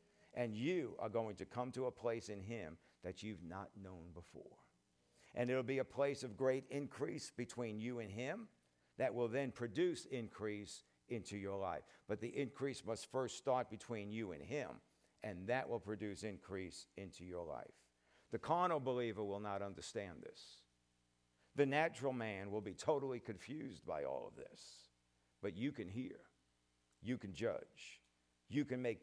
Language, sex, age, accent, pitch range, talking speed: English, male, 50-69, American, 90-130 Hz, 170 wpm